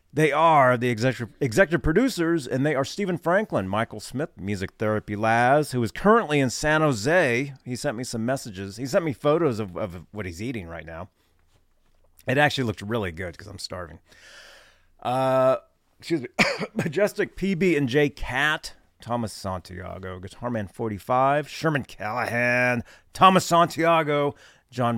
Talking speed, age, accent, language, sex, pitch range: 155 wpm, 30-49, American, English, male, 100-145 Hz